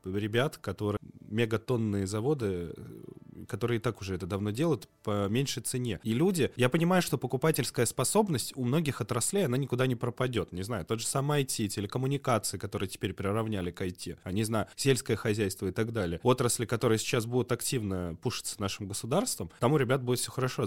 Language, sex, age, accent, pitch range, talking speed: Russian, male, 20-39, native, 100-130 Hz, 175 wpm